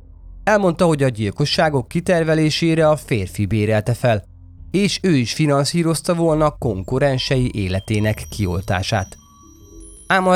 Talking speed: 110 wpm